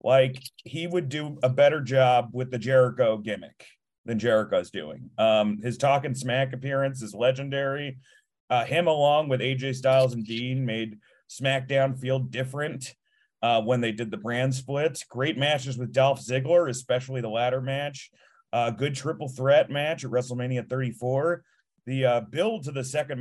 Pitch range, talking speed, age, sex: 120-140 Hz, 165 wpm, 30-49, male